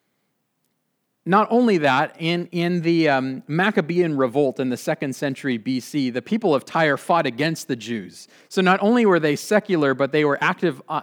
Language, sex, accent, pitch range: English, male, American, 135-180 Hz